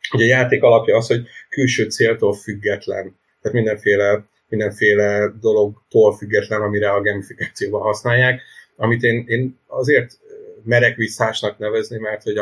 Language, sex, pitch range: Hungarian, male, 105-120 Hz